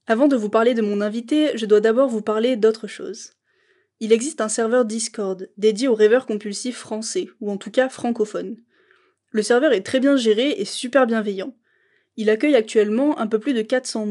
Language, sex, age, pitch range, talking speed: French, female, 20-39, 215-260 Hz, 195 wpm